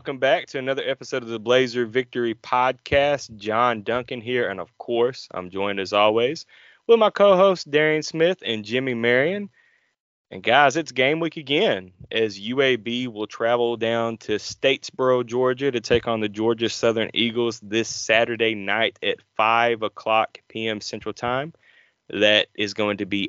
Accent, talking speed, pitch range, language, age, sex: American, 160 wpm, 110-135 Hz, English, 20-39, male